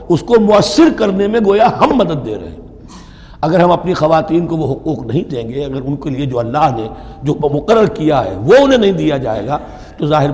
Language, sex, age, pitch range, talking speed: Urdu, male, 60-79, 125-185 Hz, 230 wpm